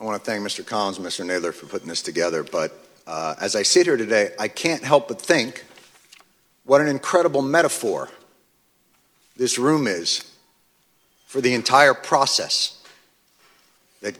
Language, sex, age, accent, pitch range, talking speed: English, male, 50-69, American, 135-185 Hz, 155 wpm